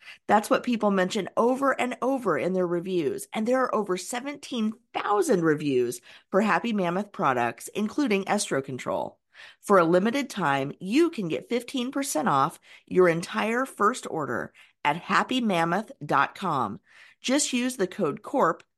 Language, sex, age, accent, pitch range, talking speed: English, female, 40-59, American, 155-205 Hz, 135 wpm